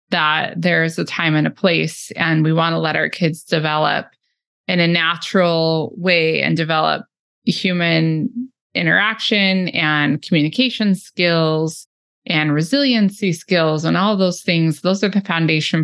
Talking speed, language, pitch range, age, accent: 140 wpm, English, 160-195 Hz, 20-39, American